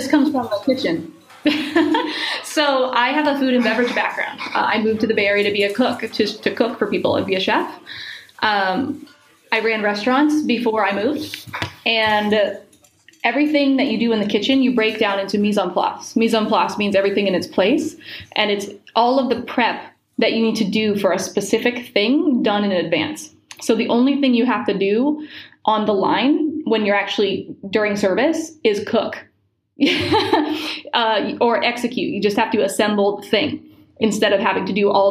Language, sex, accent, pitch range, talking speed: English, female, American, 200-280 Hz, 200 wpm